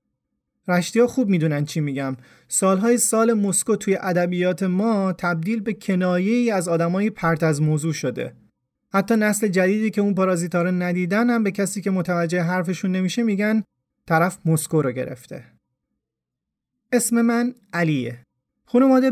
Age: 30-49